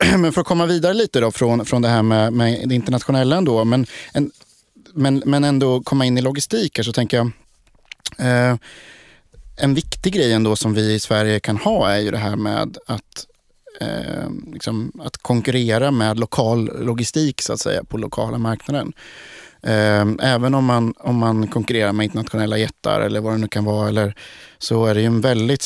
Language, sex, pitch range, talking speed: Swedish, male, 110-130 Hz, 190 wpm